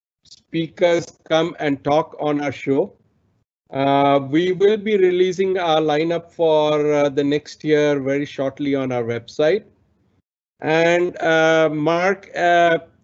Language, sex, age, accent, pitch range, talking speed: English, male, 50-69, Indian, 150-185 Hz, 130 wpm